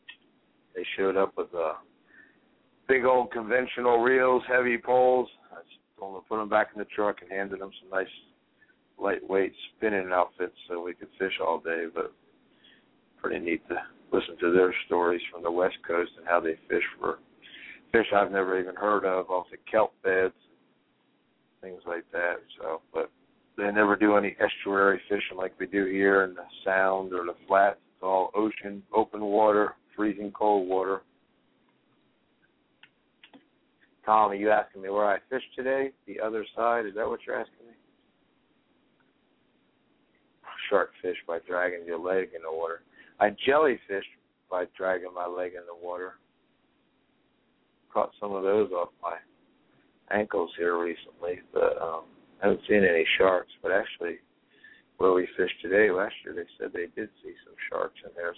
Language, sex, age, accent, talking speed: English, male, 60-79, American, 160 wpm